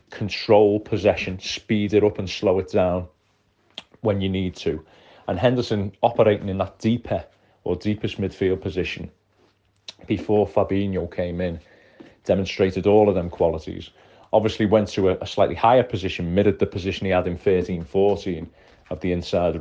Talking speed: 155 wpm